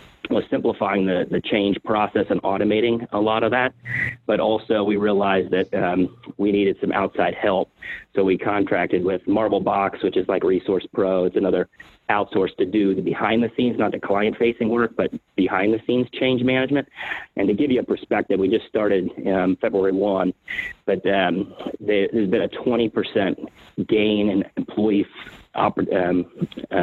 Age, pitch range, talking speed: 30-49, 95-115 Hz, 160 wpm